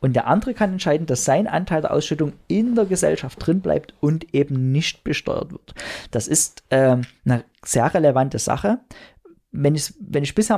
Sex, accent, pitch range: male, German, 130-165 Hz